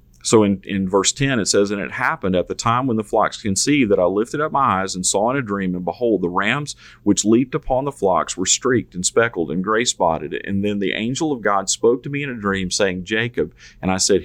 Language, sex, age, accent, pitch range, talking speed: English, male, 40-59, American, 95-120 Hz, 255 wpm